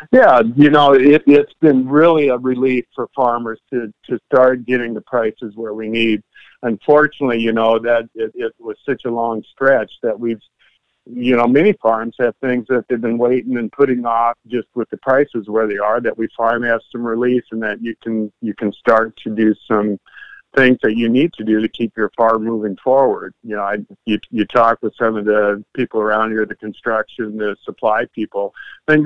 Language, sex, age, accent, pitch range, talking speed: English, male, 50-69, American, 110-135 Hz, 205 wpm